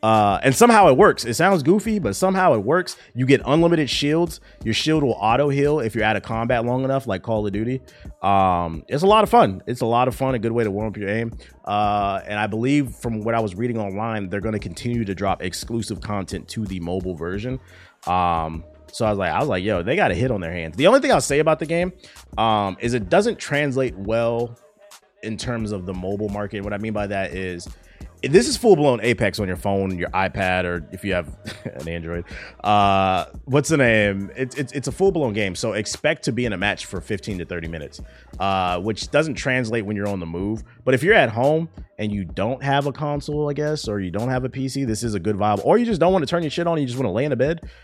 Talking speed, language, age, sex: 255 wpm, English, 30-49, male